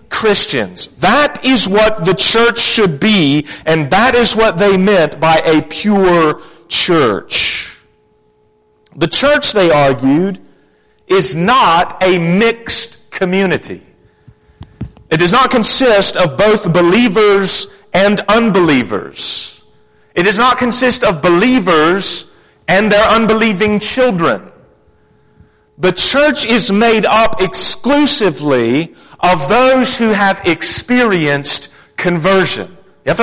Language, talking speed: English, 110 wpm